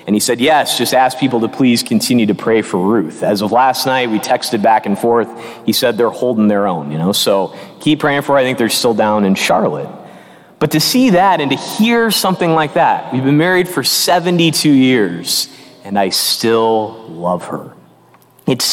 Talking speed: 210 wpm